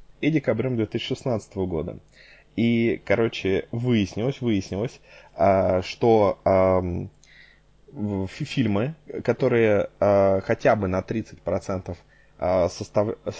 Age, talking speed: 20-39, 75 wpm